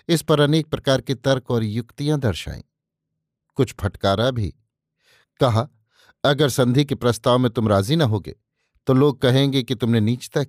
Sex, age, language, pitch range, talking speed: male, 50-69, Hindi, 115-140 Hz, 160 wpm